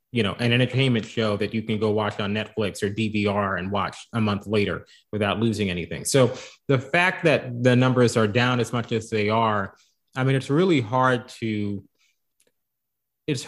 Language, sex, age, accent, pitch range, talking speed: English, male, 30-49, American, 105-125 Hz, 185 wpm